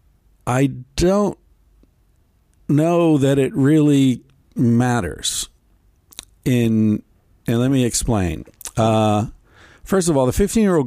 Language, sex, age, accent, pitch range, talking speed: English, male, 50-69, American, 95-135 Hz, 100 wpm